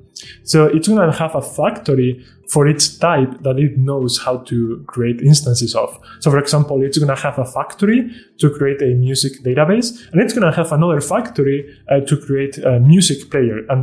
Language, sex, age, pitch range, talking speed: Russian, male, 20-39, 130-165 Hz, 185 wpm